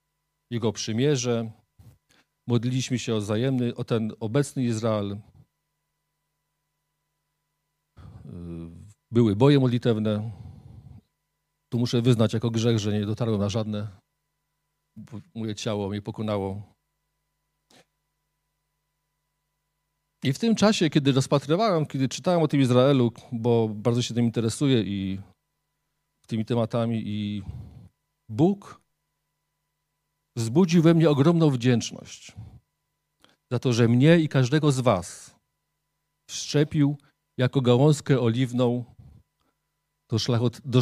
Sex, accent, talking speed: male, native, 95 wpm